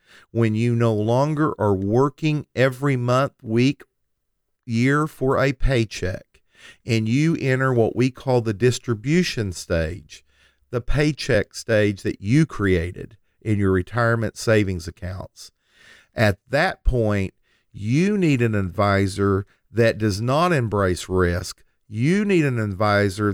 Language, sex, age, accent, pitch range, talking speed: English, male, 50-69, American, 100-130 Hz, 125 wpm